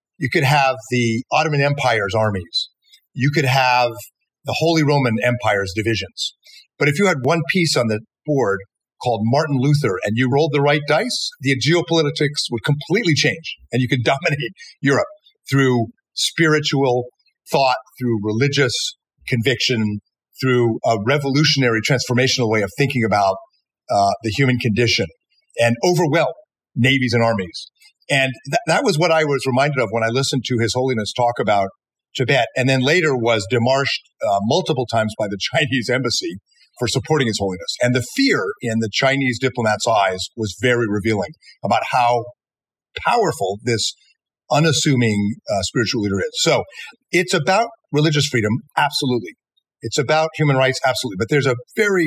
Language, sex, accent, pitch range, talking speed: English, male, American, 115-150 Hz, 155 wpm